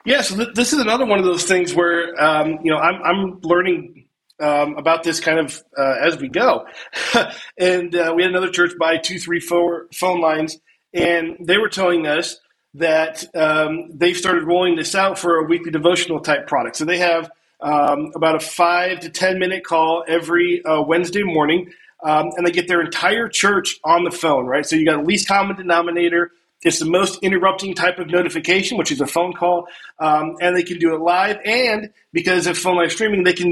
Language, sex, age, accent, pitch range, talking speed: English, male, 40-59, American, 155-180 Hz, 210 wpm